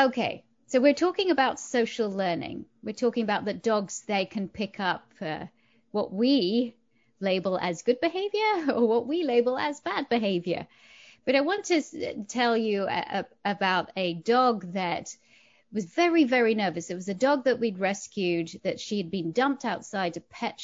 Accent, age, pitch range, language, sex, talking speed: British, 30-49, 185-245 Hz, English, female, 175 wpm